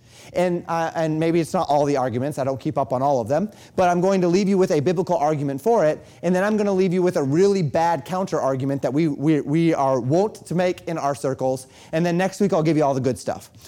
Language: English